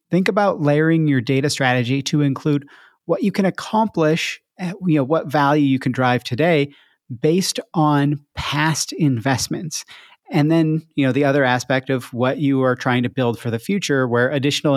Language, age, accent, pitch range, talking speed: English, 40-59, American, 130-165 Hz, 180 wpm